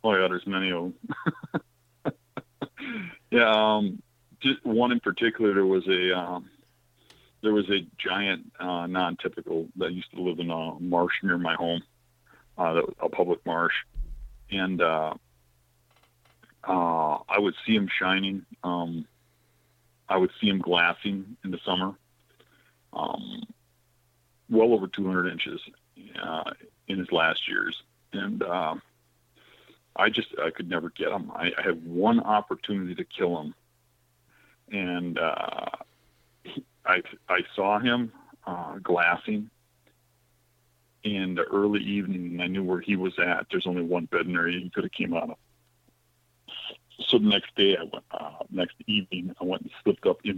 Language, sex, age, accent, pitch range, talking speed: English, male, 50-69, American, 90-120 Hz, 150 wpm